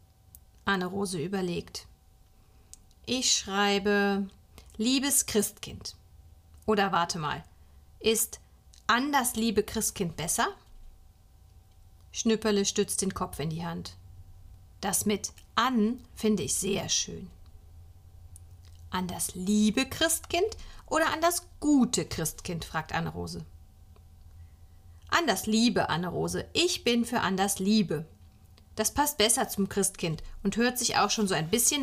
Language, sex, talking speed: German, female, 115 wpm